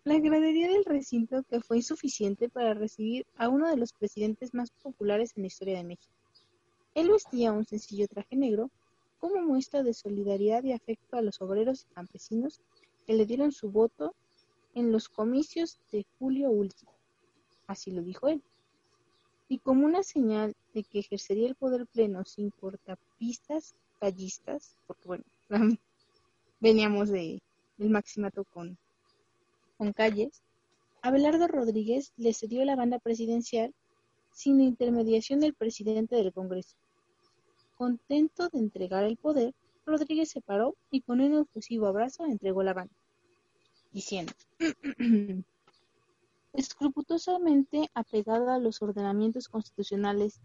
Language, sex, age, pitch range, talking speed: Spanish, female, 30-49, 210-280 Hz, 130 wpm